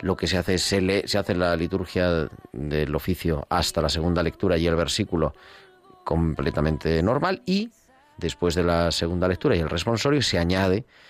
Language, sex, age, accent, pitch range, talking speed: Spanish, male, 40-59, Spanish, 80-100 Hz, 175 wpm